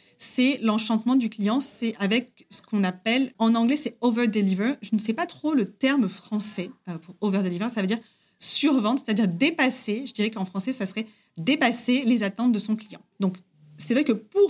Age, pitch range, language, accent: 30-49, 200-255 Hz, French, French